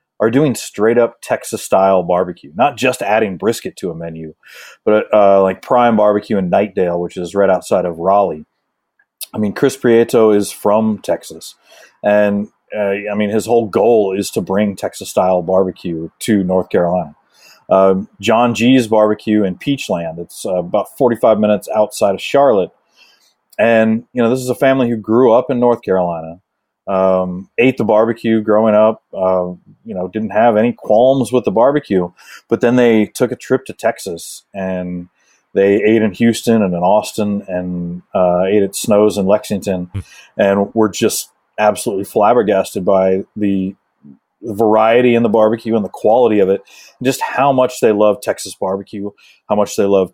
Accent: American